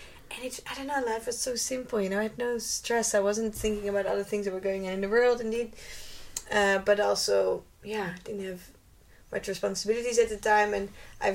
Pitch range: 190-215 Hz